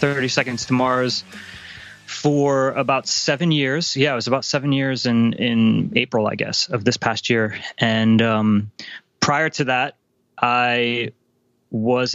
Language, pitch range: English, 110-125 Hz